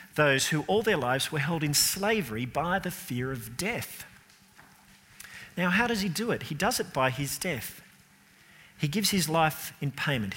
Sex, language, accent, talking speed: male, English, Australian, 185 wpm